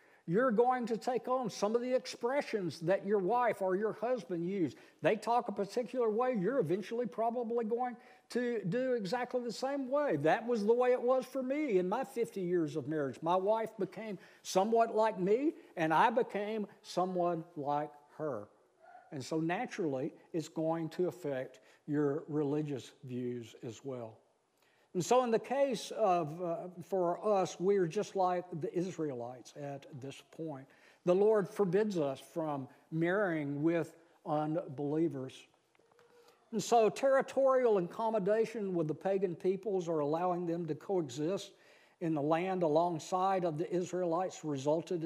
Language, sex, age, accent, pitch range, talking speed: English, male, 60-79, American, 155-225 Hz, 155 wpm